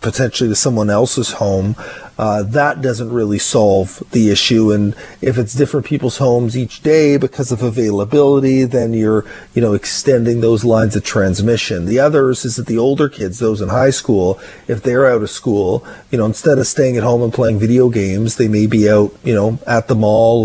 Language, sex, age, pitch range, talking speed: English, male, 40-59, 110-125 Hz, 200 wpm